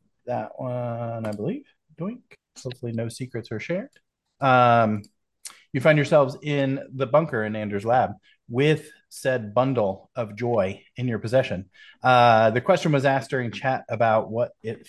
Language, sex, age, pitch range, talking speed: English, male, 30-49, 105-125 Hz, 155 wpm